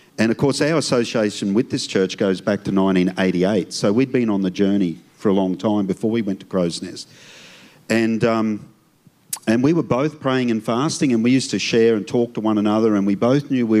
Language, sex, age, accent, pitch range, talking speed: English, male, 40-59, Australian, 95-120 Hz, 225 wpm